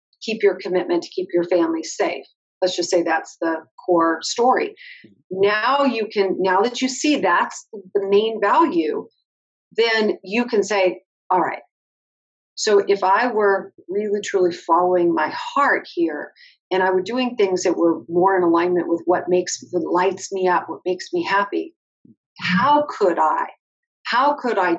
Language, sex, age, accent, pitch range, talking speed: English, female, 40-59, American, 185-255 Hz, 165 wpm